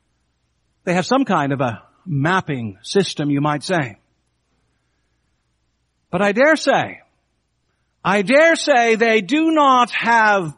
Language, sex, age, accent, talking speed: English, male, 60-79, American, 125 wpm